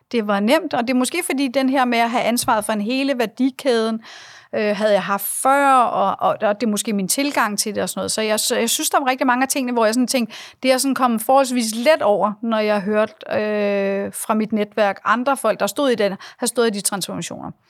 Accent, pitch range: native, 210-260 Hz